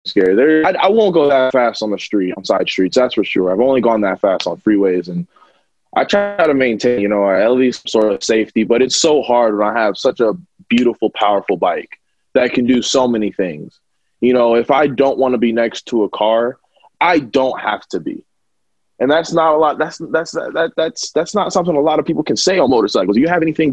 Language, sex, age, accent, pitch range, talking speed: English, male, 20-39, American, 105-140 Hz, 245 wpm